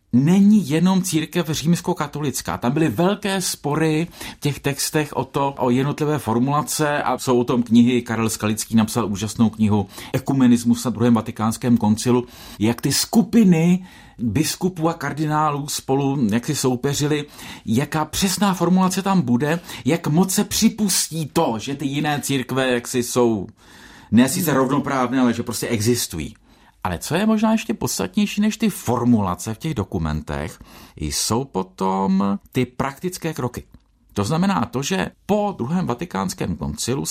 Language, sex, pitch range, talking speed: Czech, male, 115-165 Hz, 140 wpm